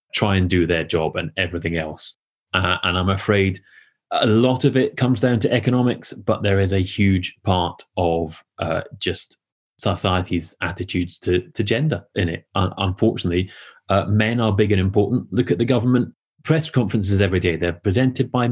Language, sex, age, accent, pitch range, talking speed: English, male, 30-49, British, 95-115 Hz, 180 wpm